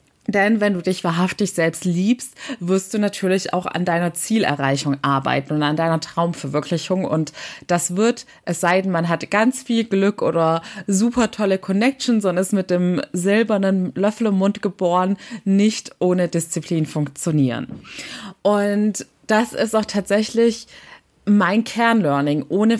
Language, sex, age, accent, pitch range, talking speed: German, female, 20-39, German, 180-215 Hz, 145 wpm